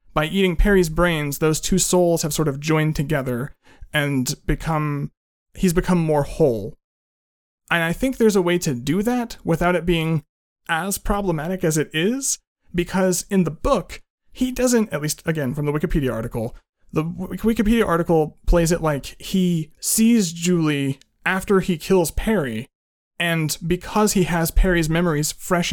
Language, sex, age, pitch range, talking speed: English, male, 30-49, 150-190 Hz, 160 wpm